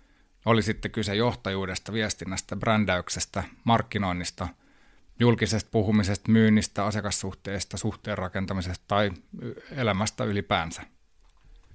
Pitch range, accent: 95-110 Hz, native